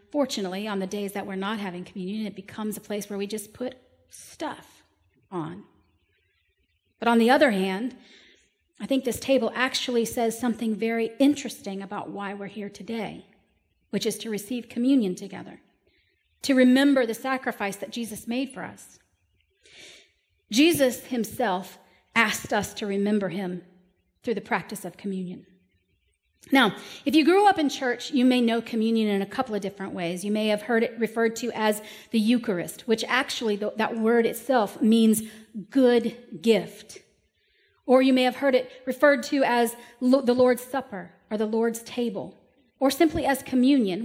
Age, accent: 40-59, American